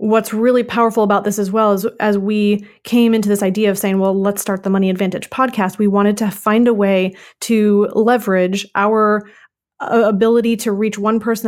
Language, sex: English, female